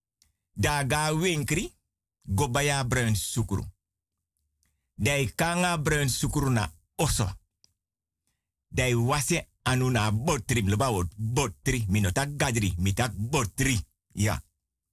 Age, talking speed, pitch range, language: 50-69, 85 wpm, 95-150 Hz, Dutch